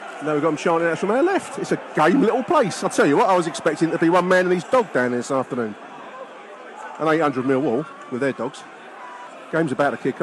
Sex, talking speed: male, 245 wpm